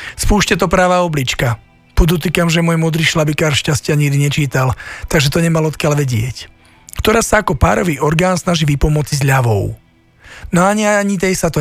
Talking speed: 165 wpm